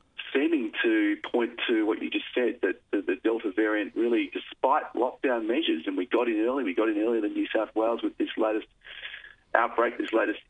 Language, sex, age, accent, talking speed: English, male, 40-59, Australian, 200 wpm